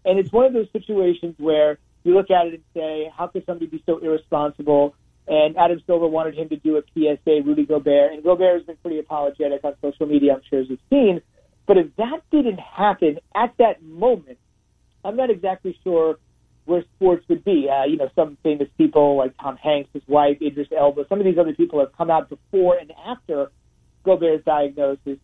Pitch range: 145-185 Hz